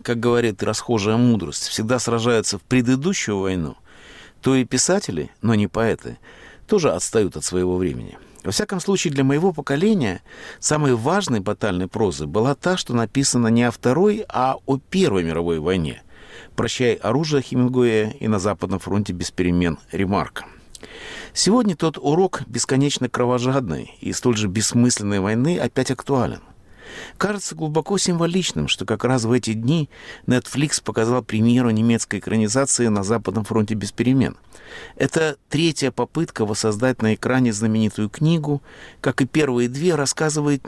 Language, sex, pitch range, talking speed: Russian, male, 110-145 Hz, 140 wpm